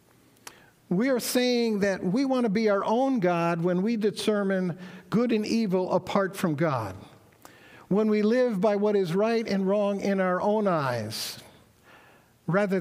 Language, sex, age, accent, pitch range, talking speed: English, male, 60-79, American, 140-200 Hz, 160 wpm